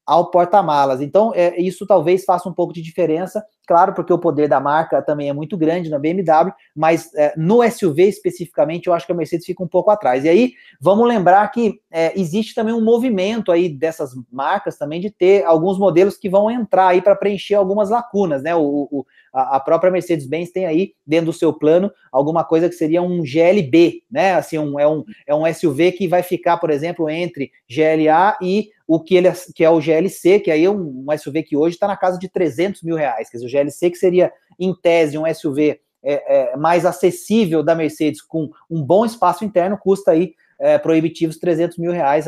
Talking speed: 205 wpm